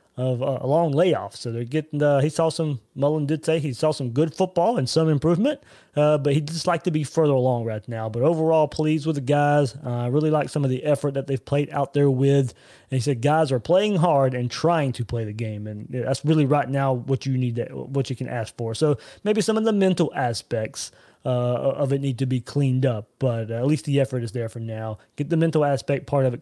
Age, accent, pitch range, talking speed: 20-39, American, 125-155 Hz, 255 wpm